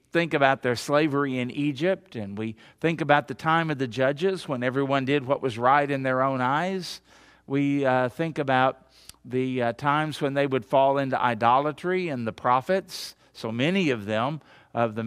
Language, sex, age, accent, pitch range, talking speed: English, male, 50-69, American, 130-160 Hz, 185 wpm